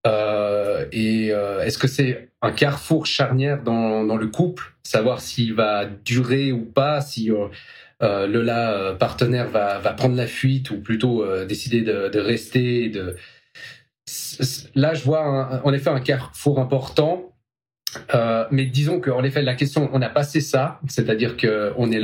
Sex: male